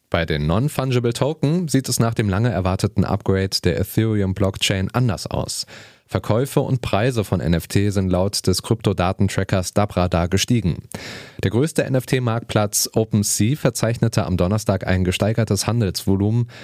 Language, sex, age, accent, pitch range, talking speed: German, male, 30-49, German, 95-120 Hz, 125 wpm